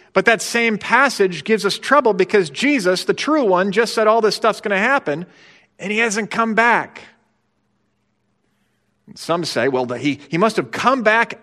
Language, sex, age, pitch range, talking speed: English, male, 40-59, 110-170 Hz, 180 wpm